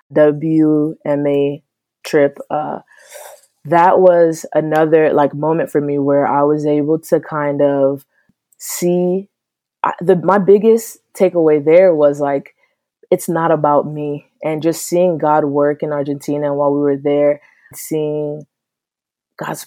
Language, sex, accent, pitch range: English, female, American, 145-170 Hz